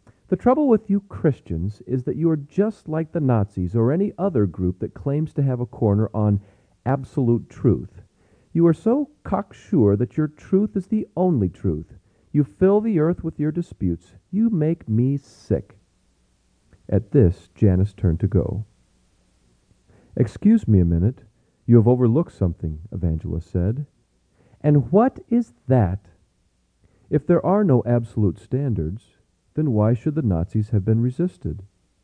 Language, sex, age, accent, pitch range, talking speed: English, male, 40-59, American, 95-150 Hz, 155 wpm